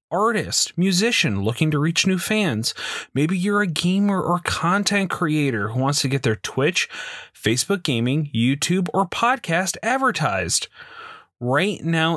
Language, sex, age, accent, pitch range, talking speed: English, male, 30-49, American, 130-185 Hz, 140 wpm